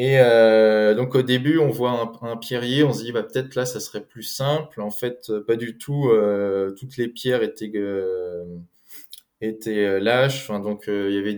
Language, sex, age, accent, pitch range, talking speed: French, male, 20-39, French, 100-125 Hz, 215 wpm